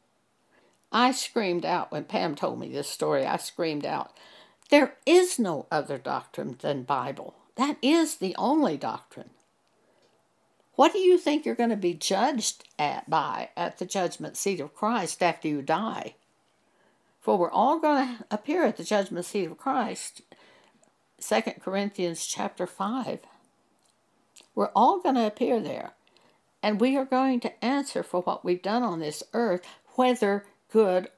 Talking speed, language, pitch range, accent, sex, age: 155 wpm, English, 190-255 Hz, American, female, 60-79